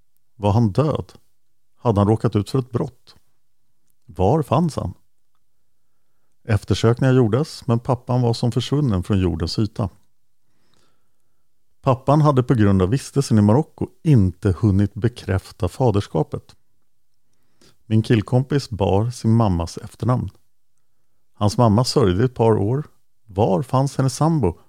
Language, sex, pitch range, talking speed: English, male, 100-130 Hz, 125 wpm